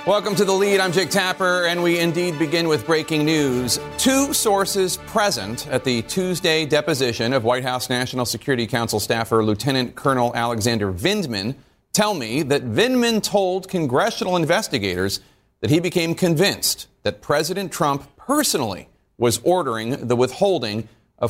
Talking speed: 145 wpm